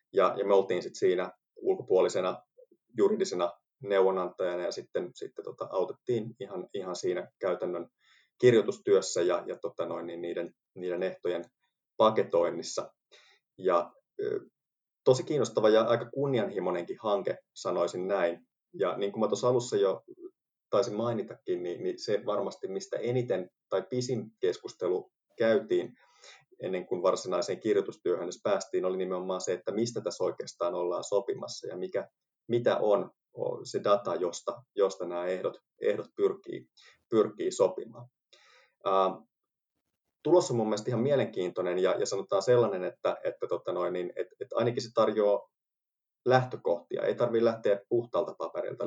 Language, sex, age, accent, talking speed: Finnish, male, 30-49, native, 135 wpm